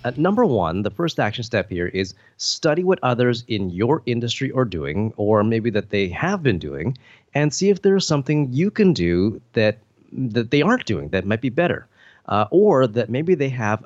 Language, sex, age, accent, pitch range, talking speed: English, male, 30-49, American, 100-140 Hz, 205 wpm